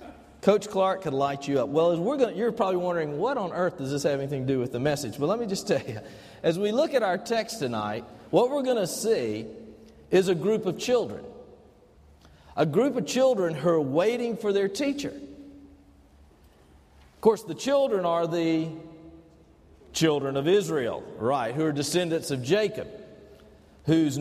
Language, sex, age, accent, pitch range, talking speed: English, male, 50-69, American, 125-190 Hz, 185 wpm